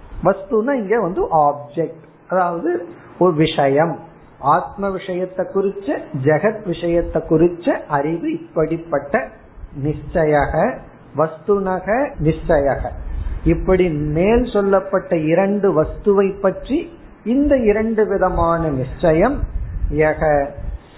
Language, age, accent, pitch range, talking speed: Tamil, 50-69, native, 145-200 Hz, 70 wpm